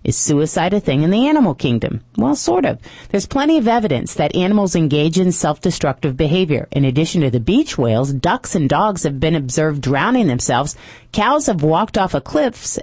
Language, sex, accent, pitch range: English, female, American, 140-195 Hz